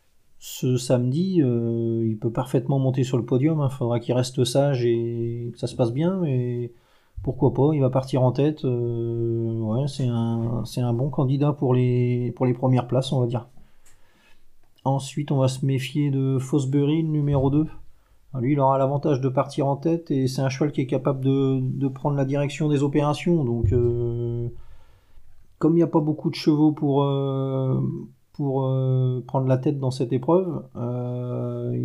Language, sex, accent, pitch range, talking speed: French, male, French, 125-140 Hz, 185 wpm